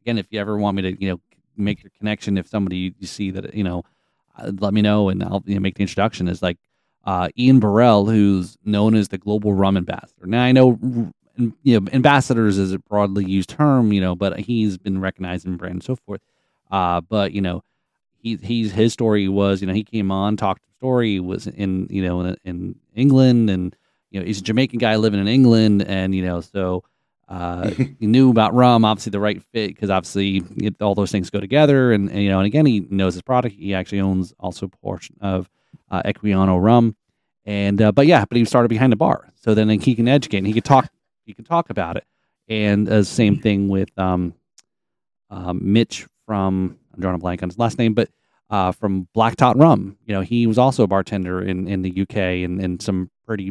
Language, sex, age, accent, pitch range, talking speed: English, male, 30-49, American, 95-115 Hz, 220 wpm